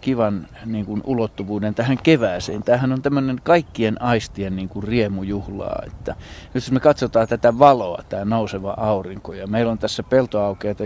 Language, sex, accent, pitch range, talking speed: Finnish, male, native, 100-115 Hz, 160 wpm